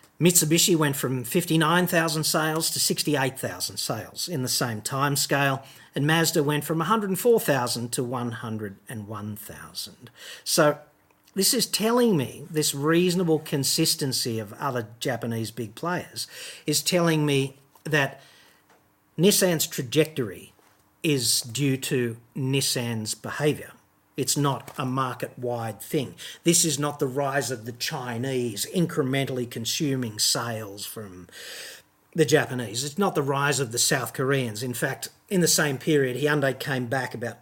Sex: male